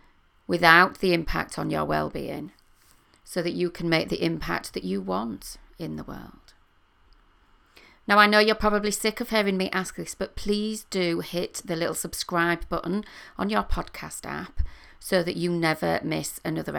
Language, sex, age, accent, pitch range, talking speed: English, female, 40-59, British, 160-200 Hz, 170 wpm